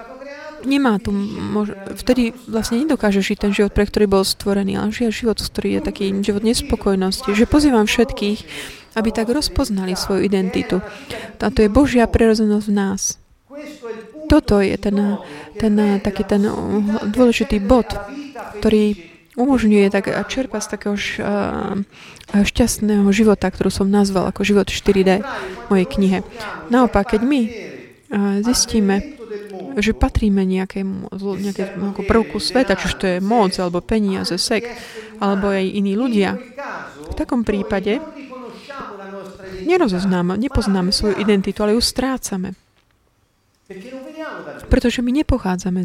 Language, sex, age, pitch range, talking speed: Slovak, female, 20-39, 195-235 Hz, 125 wpm